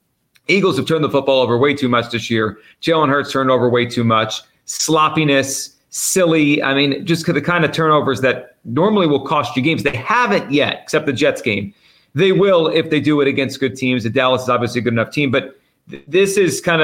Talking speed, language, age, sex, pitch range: 215 wpm, English, 40-59, male, 125-155 Hz